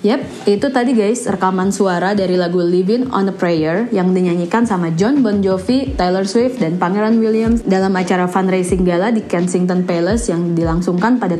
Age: 20-39